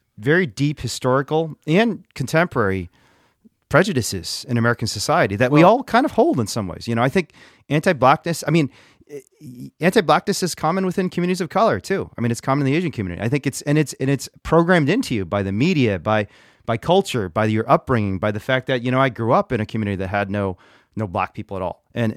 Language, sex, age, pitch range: Japanese, male, 30-49, 105-145 Hz